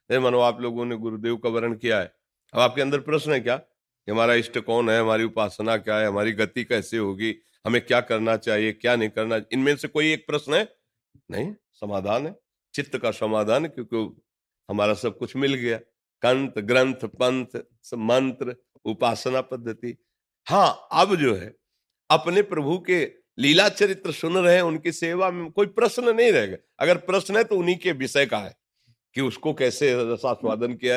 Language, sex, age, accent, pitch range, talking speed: Hindi, male, 50-69, native, 100-135 Hz, 175 wpm